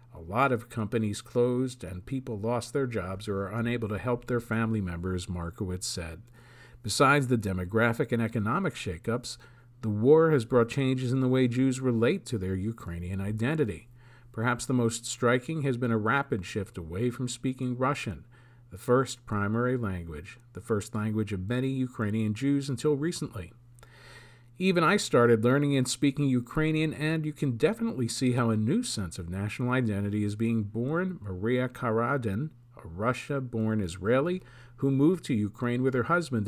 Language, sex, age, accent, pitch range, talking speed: English, male, 50-69, American, 105-130 Hz, 165 wpm